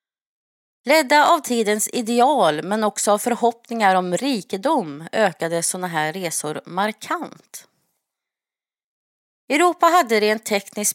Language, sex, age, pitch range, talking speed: Swedish, female, 30-49, 185-260 Hz, 105 wpm